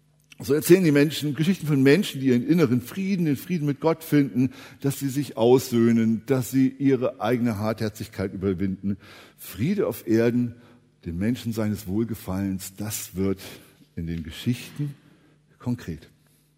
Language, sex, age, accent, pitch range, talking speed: German, male, 60-79, German, 100-145 Hz, 140 wpm